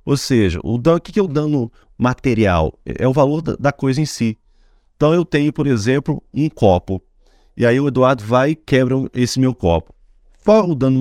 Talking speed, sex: 195 wpm, male